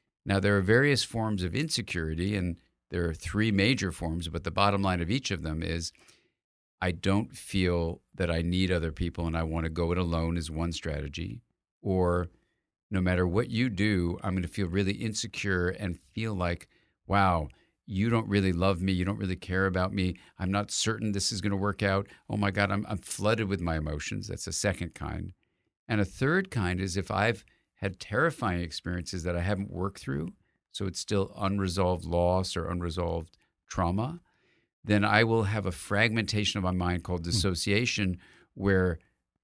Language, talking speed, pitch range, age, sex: English, 190 wpm, 85-105 Hz, 50-69, male